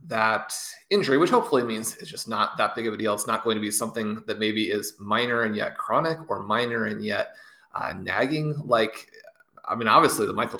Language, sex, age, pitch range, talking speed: English, male, 20-39, 110-140 Hz, 215 wpm